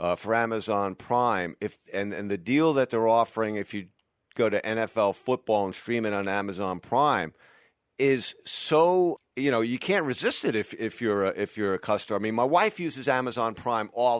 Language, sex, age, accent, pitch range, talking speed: English, male, 50-69, American, 105-140 Hz, 205 wpm